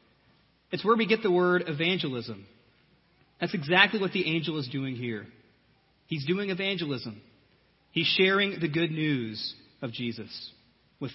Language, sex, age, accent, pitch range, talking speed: English, male, 30-49, American, 130-185 Hz, 140 wpm